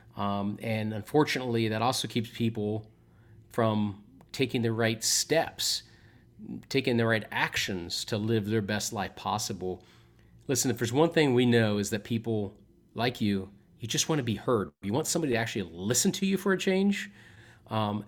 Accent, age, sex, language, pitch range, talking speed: American, 30-49, male, English, 105-130 Hz, 175 wpm